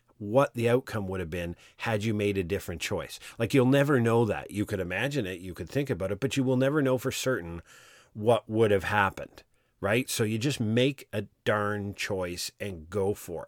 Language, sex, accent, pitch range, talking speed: English, male, American, 95-115 Hz, 215 wpm